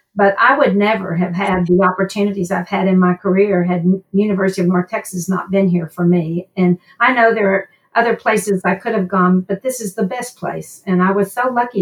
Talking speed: 230 wpm